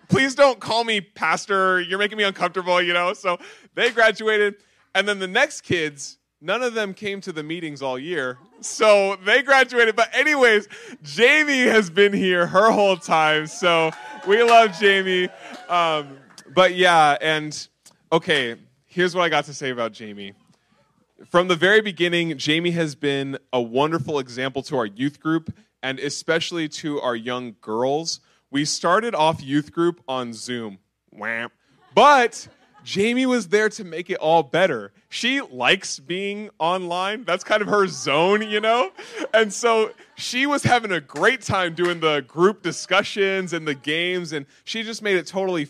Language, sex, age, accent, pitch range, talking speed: English, male, 20-39, American, 150-205 Hz, 165 wpm